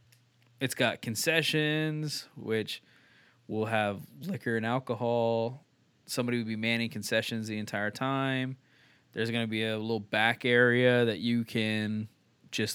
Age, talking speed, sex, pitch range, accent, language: 20-39, 135 wpm, male, 110-125 Hz, American, English